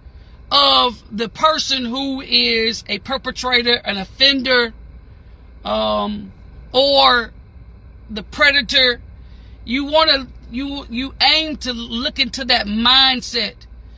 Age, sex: 50-69, female